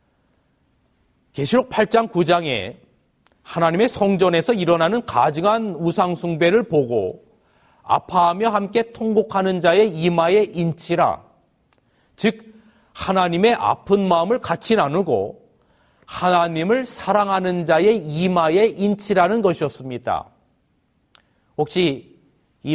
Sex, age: male, 40-59